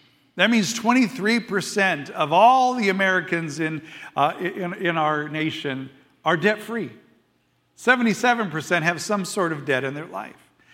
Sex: male